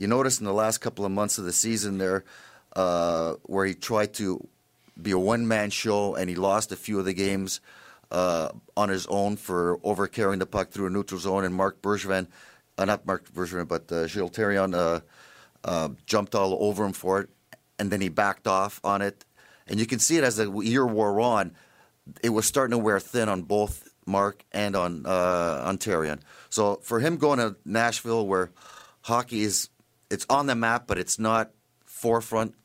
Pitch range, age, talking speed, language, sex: 95-115 Hz, 40-59, 195 wpm, English, male